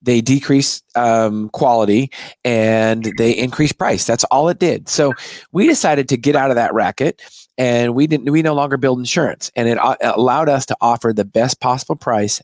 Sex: male